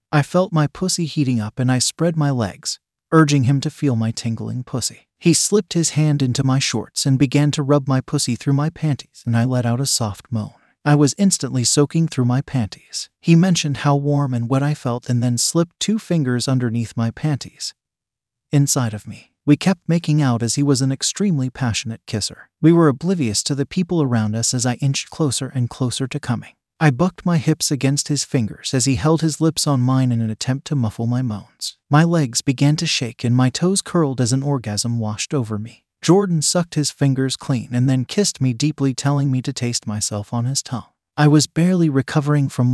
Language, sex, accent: English, male, American